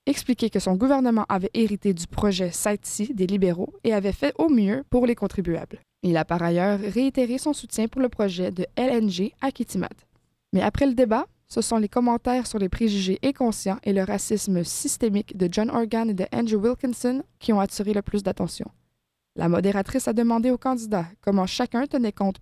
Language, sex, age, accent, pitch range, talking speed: French, female, 20-39, Canadian, 195-245 Hz, 195 wpm